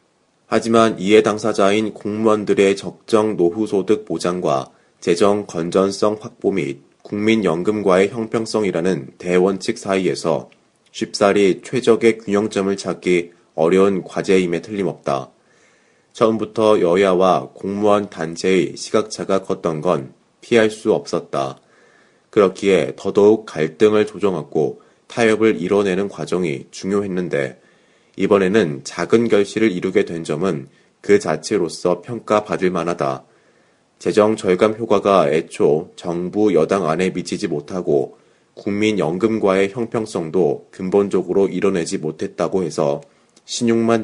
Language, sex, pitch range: Korean, male, 90-110 Hz